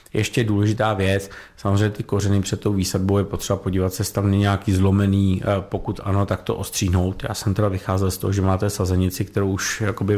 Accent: native